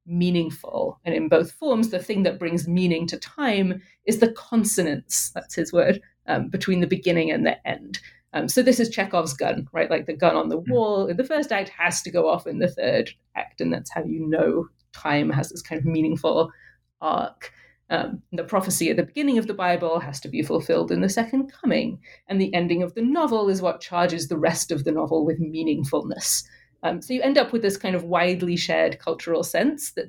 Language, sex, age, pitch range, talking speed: English, female, 30-49, 165-215 Hz, 215 wpm